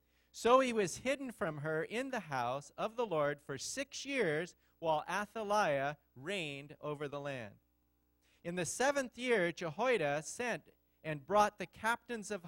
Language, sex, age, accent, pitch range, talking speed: English, male, 40-59, American, 140-220 Hz, 155 wpm